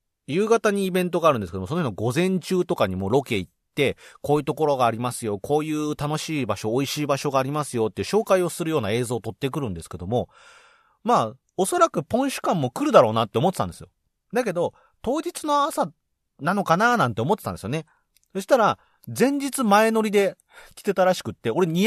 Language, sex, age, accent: Japanese, male, 40-59, native